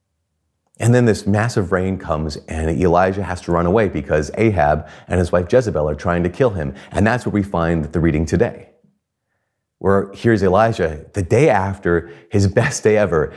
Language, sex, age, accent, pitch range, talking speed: English, male, 30-49, American, 95-135 Hz, 190 wpm